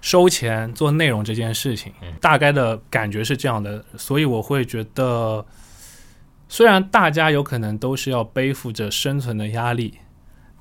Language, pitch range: Chinese, 110-135 Hz